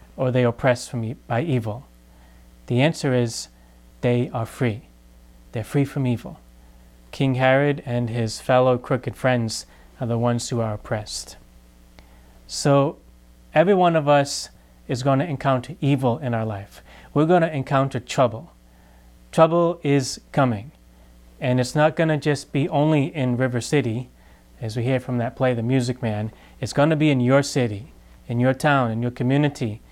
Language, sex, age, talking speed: English, male, 30-49, 160 wpm